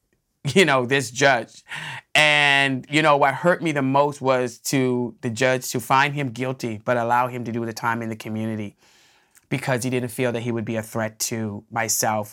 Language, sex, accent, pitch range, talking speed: English, male, American, 125-150 Hz, 205 wpm